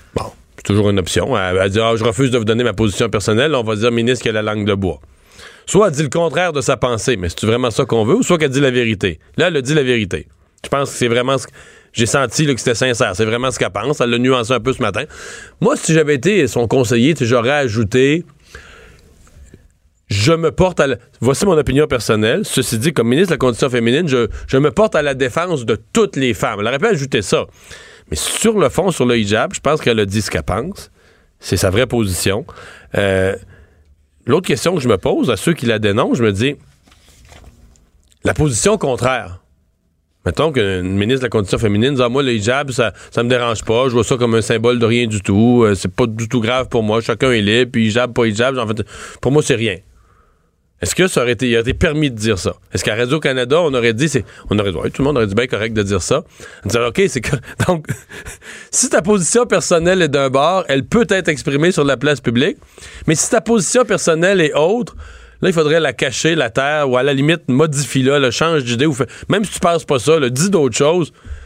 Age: 40-59